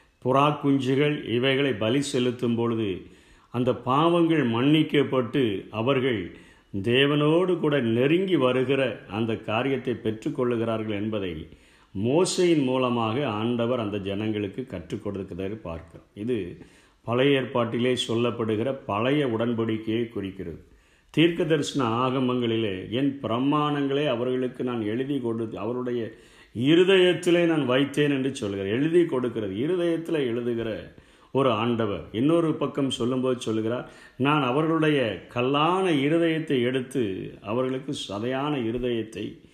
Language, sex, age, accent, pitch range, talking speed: Tamil, male, 50-69, native, 115-145 Hz, 100 wpm